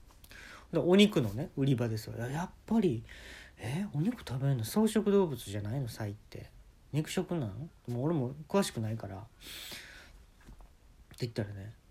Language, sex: Japanese, male